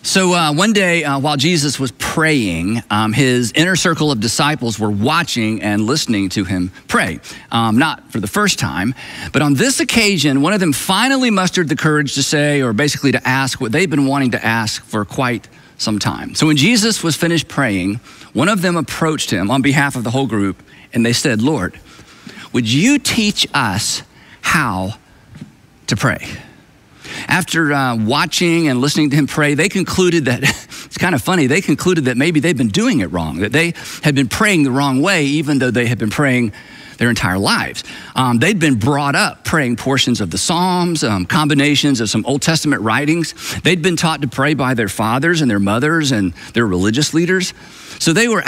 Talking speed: 195 wpm